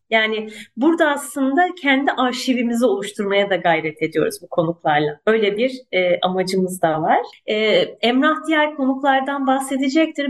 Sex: female